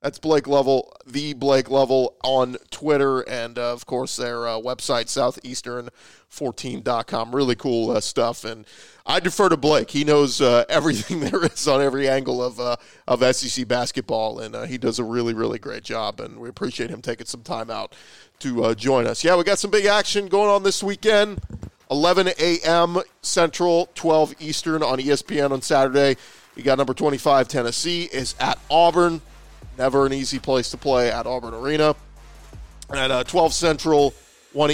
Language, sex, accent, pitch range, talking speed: English, male, American, 125-155 Hz, 175 wpm